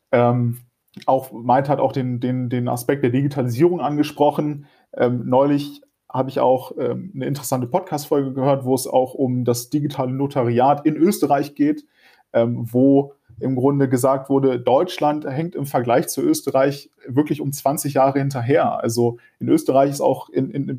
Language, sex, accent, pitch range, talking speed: German, male, German, 130-150 Hz, 160 wpm